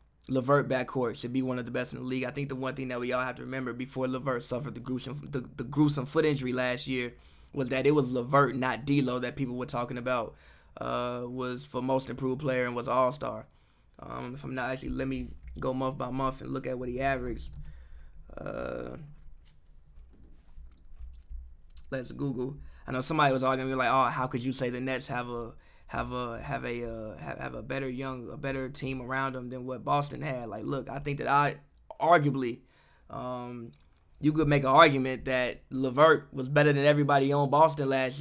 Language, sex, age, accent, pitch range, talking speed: English, male, 20-39, American, 125-140 Hz, 200 wpm